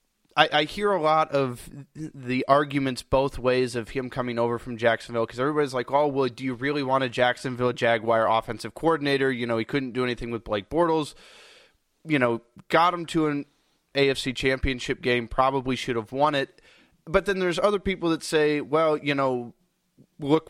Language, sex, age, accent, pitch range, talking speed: English, male, 20-39, American, 125-160 Hz, 185 wpm